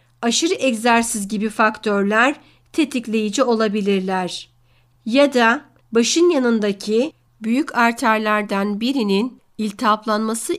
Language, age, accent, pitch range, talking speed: Turkish, 50-69, native, 205-255 Hz, 80 wpm